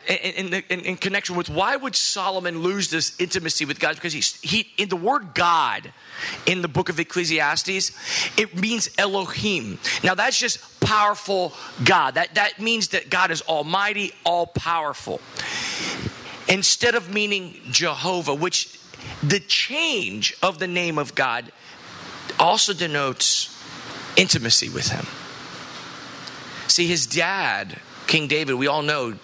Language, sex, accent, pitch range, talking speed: English, male, American, 150-190 Hz, 140 wpm